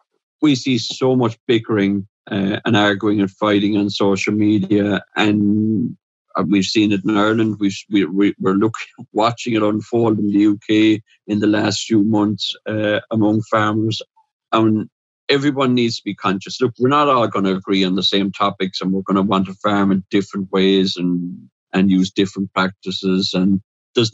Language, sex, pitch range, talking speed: English, male, 105-120 Hz, 180 wpm